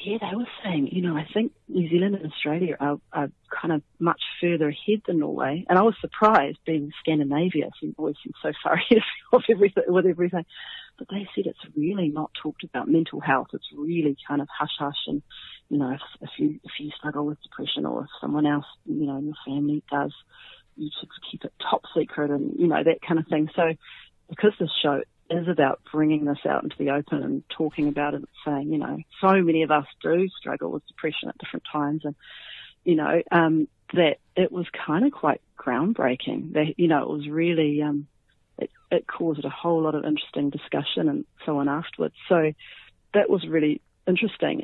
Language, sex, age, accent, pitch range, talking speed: English, female, 40-59, Australian, 150-175 Hz, 205 wpm